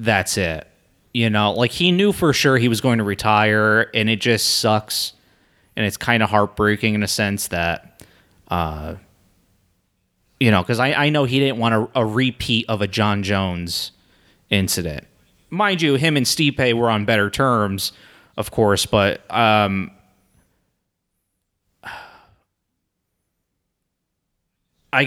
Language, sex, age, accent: English, male, 30-49, American